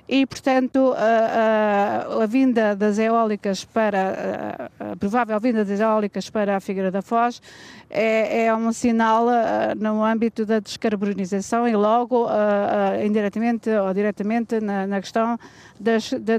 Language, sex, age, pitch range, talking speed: Portuguese, female, 50-69, 210-255 Hz, 140 wpm